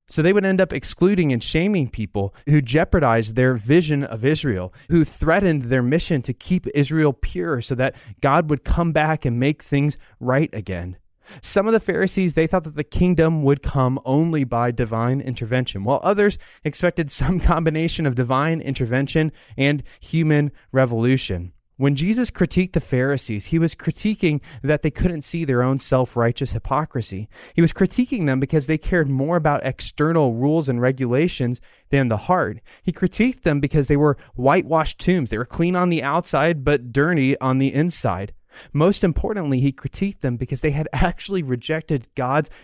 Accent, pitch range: American, 130-165 Hz